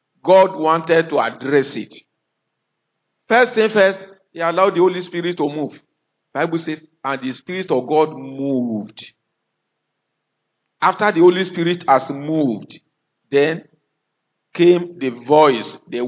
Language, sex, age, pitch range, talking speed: English, male, 50-69, 175-235 Hz, 125 wpm